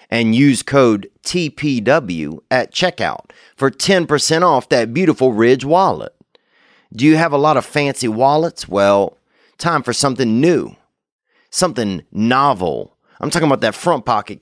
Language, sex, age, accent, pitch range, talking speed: English, male, 30-49, American, 115-165 Hz, 140 wpm